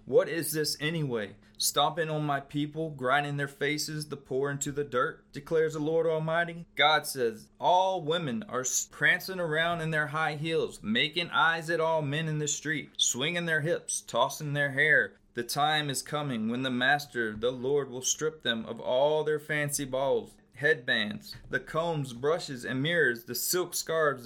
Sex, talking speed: male, 175 wpm